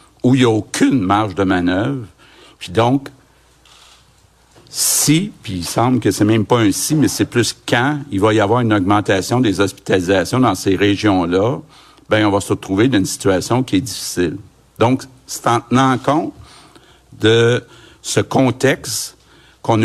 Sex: male